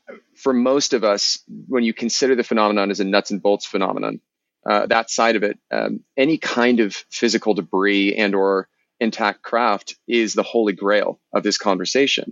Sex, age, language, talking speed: male, 30-49, English, 180 wpm